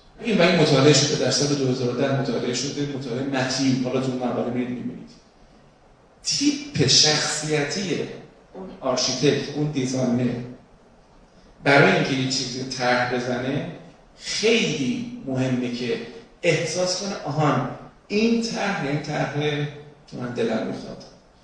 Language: Persian